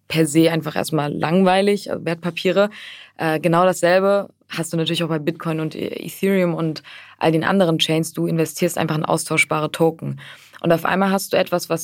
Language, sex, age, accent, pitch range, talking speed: German, female, 20-39, German, 160-180 Hz, 175 wpm